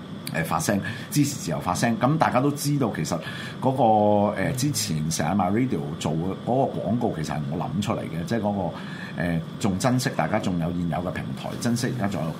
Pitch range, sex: 85-135 Hz, male